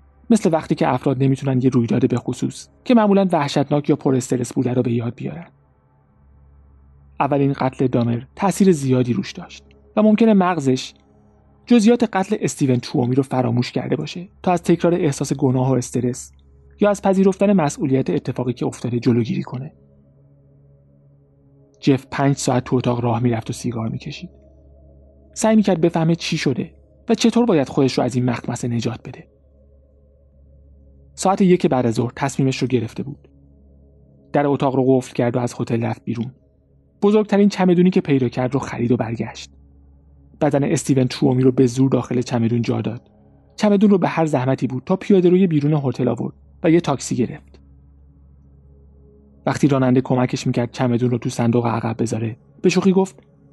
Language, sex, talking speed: Persian, male, 160 wpm